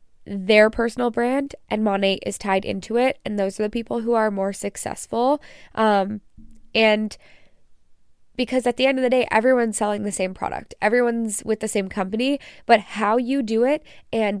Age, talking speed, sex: 10-29, 180 wpm, female